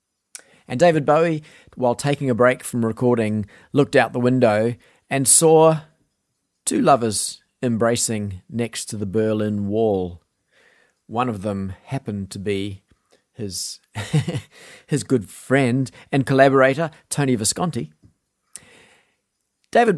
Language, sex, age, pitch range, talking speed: English, male, 30-49, 105-135 Hz, 115 wpm